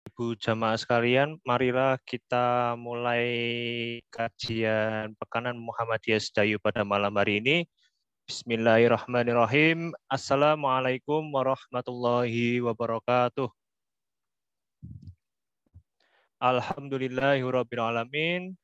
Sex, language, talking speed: male, Indonesian, 60 wpm